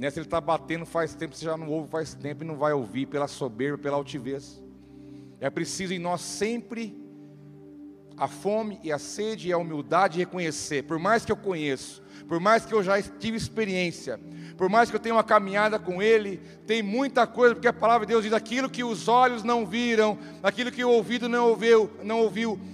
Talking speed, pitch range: 205 wpm, 170-235 Hz